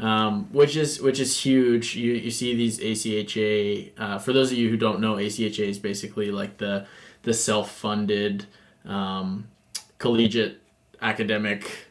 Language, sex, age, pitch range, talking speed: English, male, 20-39, 105-120 Hz, 145 wpm